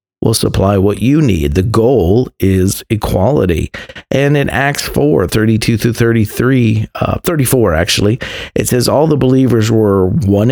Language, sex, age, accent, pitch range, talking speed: English, male, 50-69, American, 95-135 Hz, 130 wpm